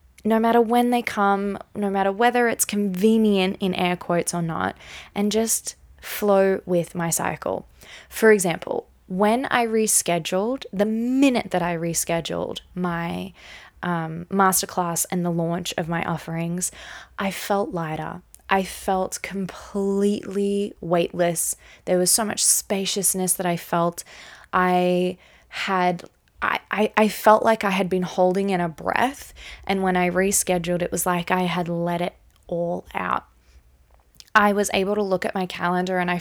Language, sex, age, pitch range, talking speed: English, female, 20-39, 175-205 Hz, 150 wpm